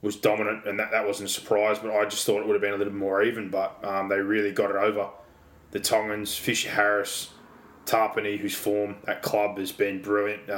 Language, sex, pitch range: English, male, 100-105 Hz